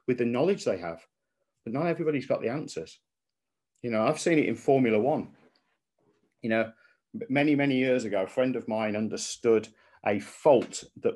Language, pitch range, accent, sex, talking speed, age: English, 110-135 Hz, British, male, 175 wpm, 50-69